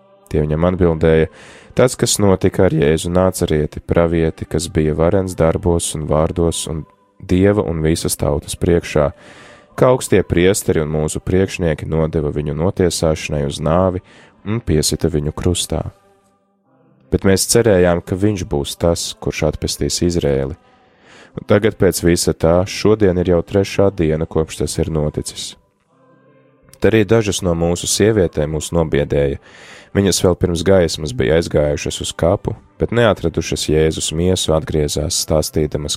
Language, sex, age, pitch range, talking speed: English, male, 20-39, 75-95 Hz, 130 wpm